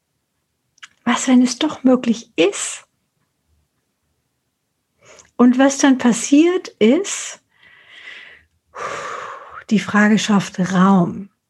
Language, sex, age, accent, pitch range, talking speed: German, female, 60-79, German, 195-230 Hz, 80 wpm